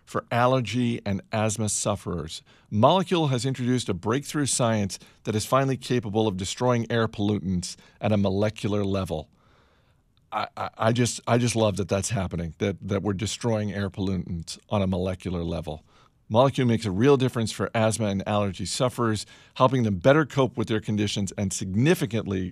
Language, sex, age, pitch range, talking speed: English, male, 50-69, 95-125 Hz, 165 wpm